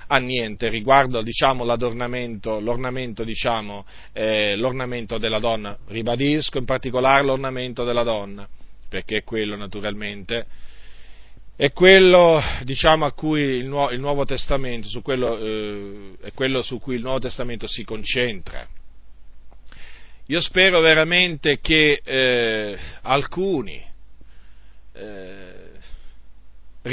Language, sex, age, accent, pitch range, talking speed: Italian, male, 40-59, native, 105-140 Hz, 105 wpm